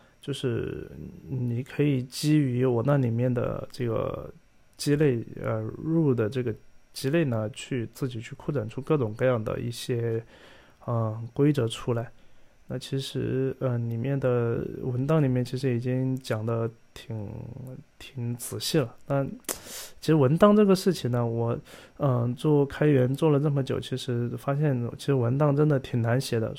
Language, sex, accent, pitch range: Chinese, male, native, 120-150 Hz